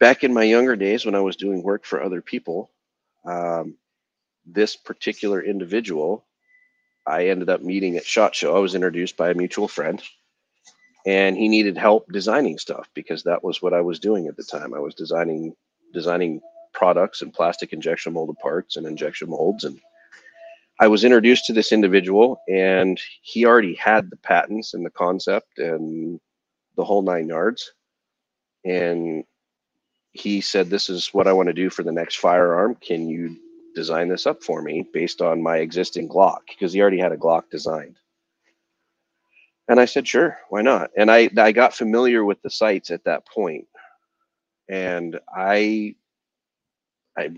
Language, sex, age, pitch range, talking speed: English, male, 40-59, 90-125 Hz, 170 wpm